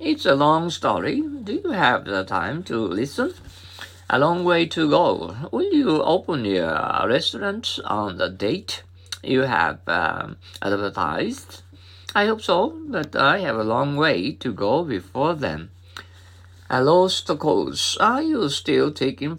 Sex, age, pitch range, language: male, 50-69, 90-140 Hz, Japanese